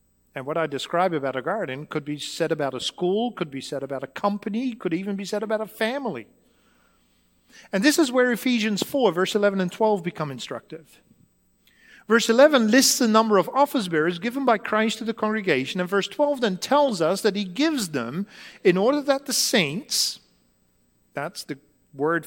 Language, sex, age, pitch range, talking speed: English, male, 40-59, 145-225 Hz, 190 wpm